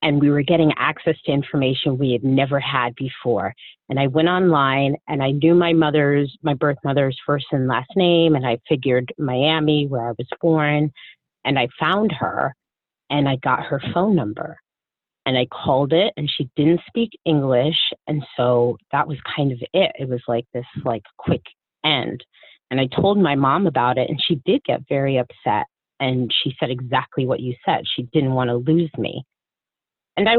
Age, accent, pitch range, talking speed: 30-49, American, 125-155 Hz, 190 wpm